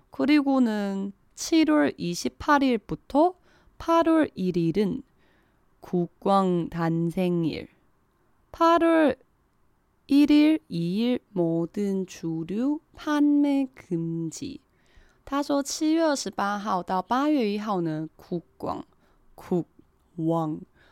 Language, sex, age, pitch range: Chinese, female, 20-39, 170-280 Hz